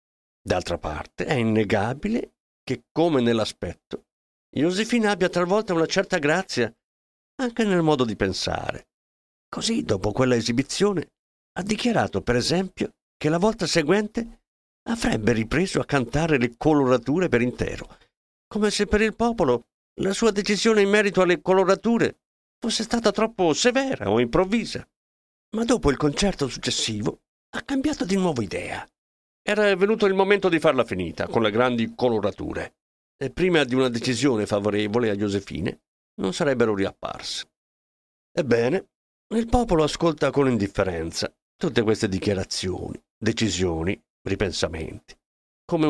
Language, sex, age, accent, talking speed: Italian, male, 50-69, native, 130 wpm